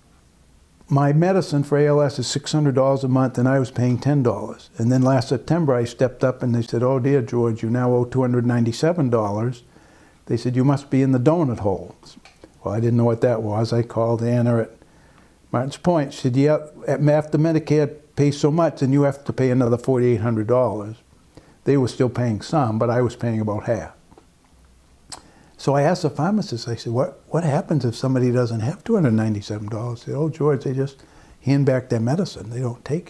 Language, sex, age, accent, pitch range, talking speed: English, male, 60-79, American, 120-140 Hz, 190 wpm